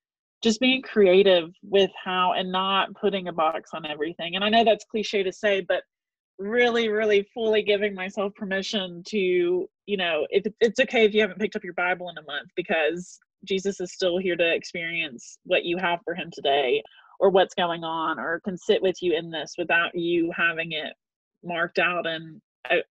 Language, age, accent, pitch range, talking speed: English, 30-49, American, 175-215 Hz, 195 wpm